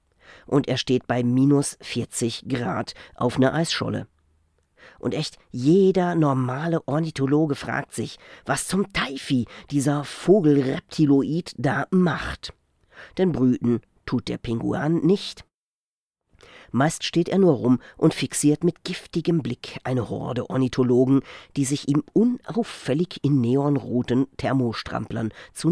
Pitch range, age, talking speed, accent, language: 125-155 Hz, 40-59, 120 wpm, German, German